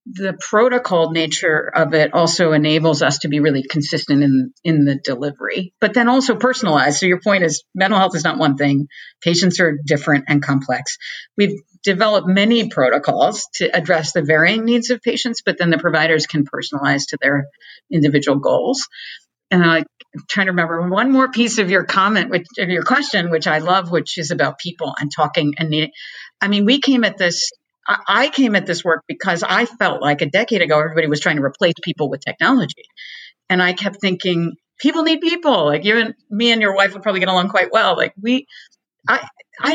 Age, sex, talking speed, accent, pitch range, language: 50-69, female, 200 wpm, American, 160-255 Hz, English